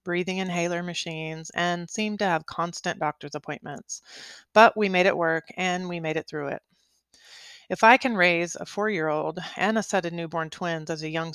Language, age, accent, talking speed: English, 30-49, American, 190 wpm